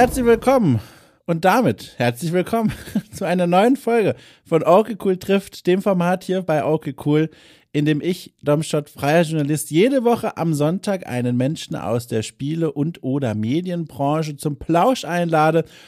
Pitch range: 145-195 Hz